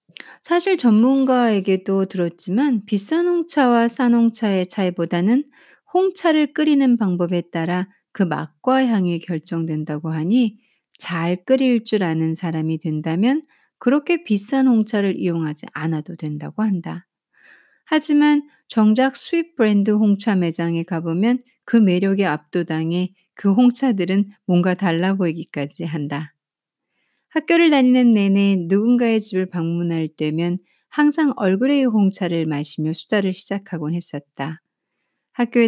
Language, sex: Korean, female